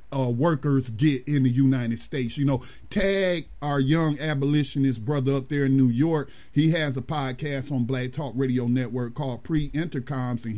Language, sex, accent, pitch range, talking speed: English, male, American, 135-180 Hz, 175 wpm